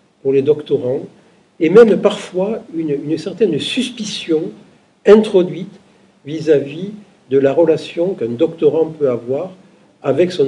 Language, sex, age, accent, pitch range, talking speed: French, male, 50-69, French, 130-175 Hz, 120 wpm